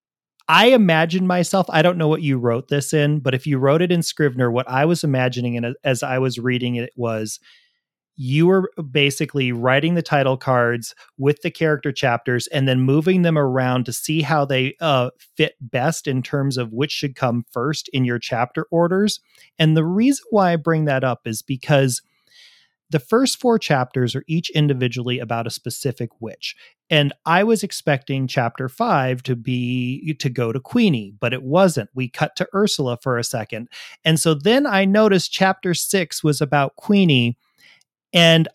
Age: 30-49